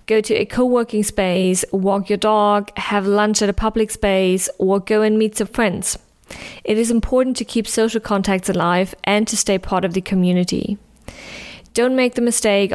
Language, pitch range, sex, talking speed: English, 195-220 Hz, female, 185 wpm